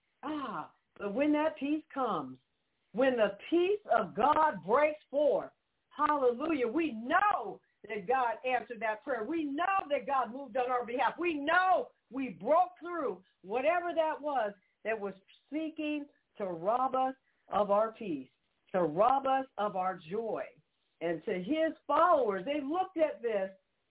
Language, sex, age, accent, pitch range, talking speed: English, female, 50-69, American, 250-325 Hz, 150 wpm